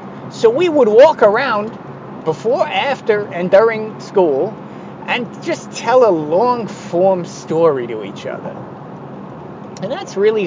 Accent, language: American, English